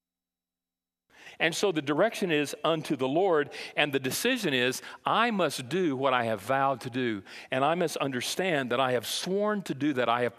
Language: English